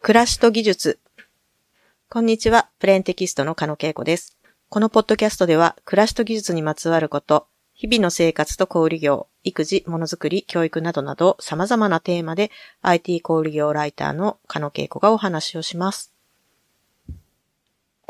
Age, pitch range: 40-59, 150-180 Hz